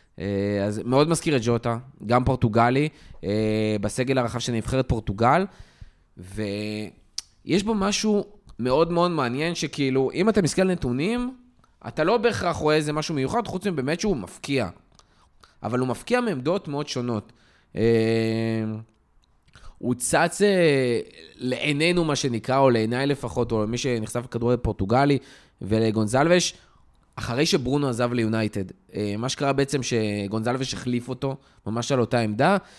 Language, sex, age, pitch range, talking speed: Hebrew, male, 20-39, 115-155 Hz, 130 wpm